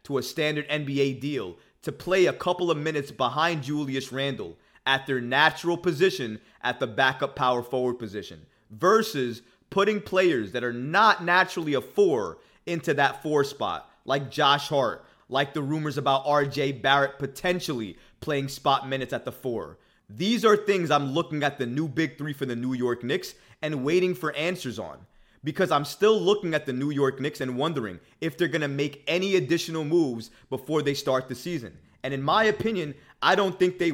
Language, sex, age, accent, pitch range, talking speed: English, male, 30-49, American, 135-180 Hz, 185 wpm